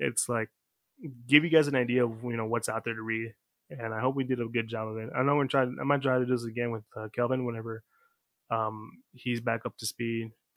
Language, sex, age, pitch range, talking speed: English, male, 20-39, 120-135 Hz, 260 wpm